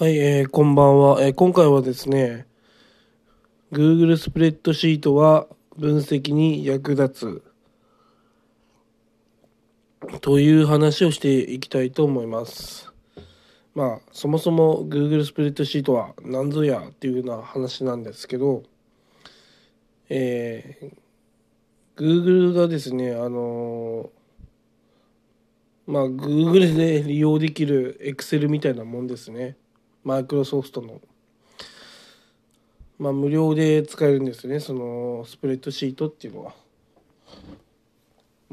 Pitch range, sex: 125-150 Hz, male